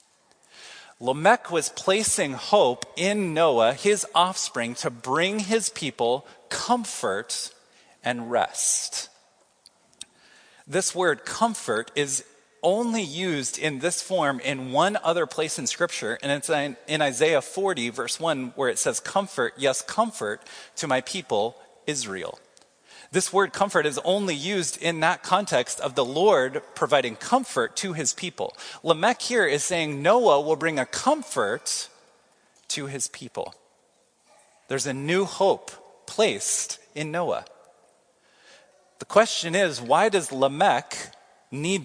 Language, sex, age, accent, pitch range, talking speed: English, male, 30-49, American, 140-205 Hz, 130 wpm